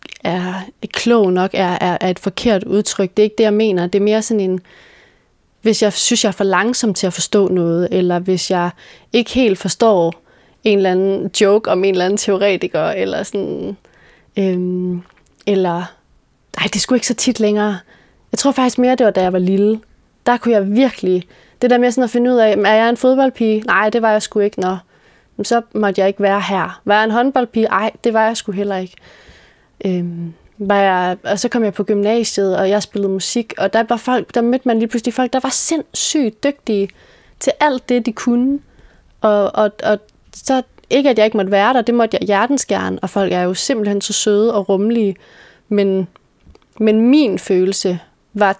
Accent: native